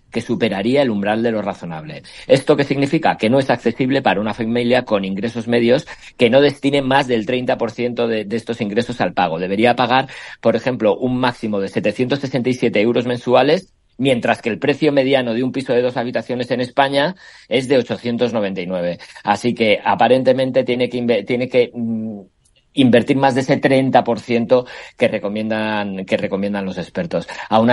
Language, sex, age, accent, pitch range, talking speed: Spanish, male, 50-69, Spanish, 110-130 Hz, 170 wpm